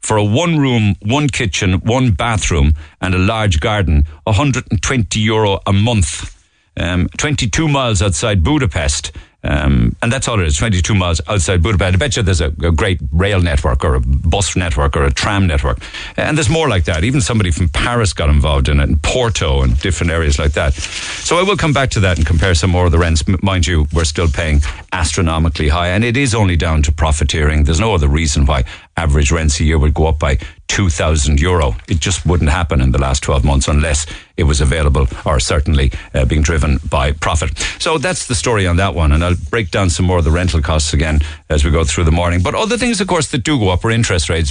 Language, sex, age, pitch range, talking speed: English, male, 50-69, 80-105 Hz, 220 wpm